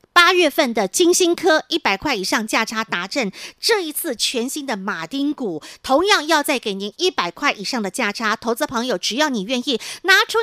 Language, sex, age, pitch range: Chinese, female, 50-69, 260-345 Hz